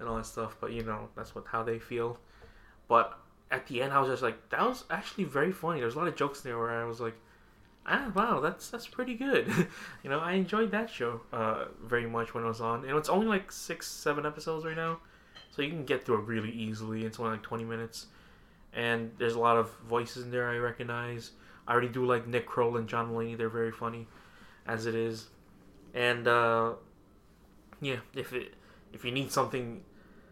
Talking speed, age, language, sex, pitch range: 220 wpm, 20-39, English, male, 115-140 Hz